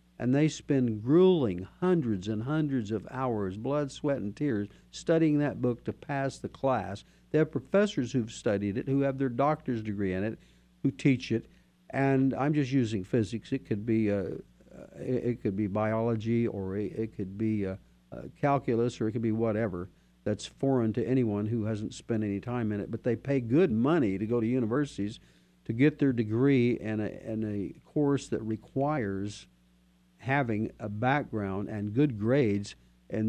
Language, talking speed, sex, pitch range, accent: English, 180 wpm, male, 105-140 Hz, American